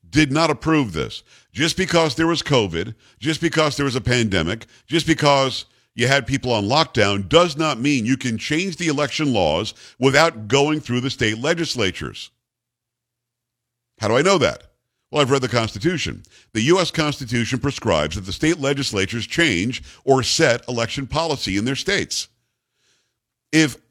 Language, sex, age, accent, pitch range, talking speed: English, male, 50-69, American, 120-155 Hz, 160 wpm